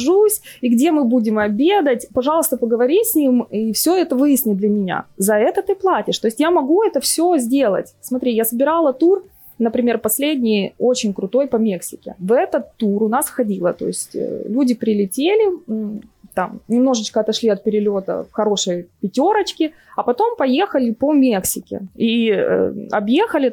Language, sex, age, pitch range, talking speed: Ukrainian, female, 20-39, 220-300 Hz, 155 wpm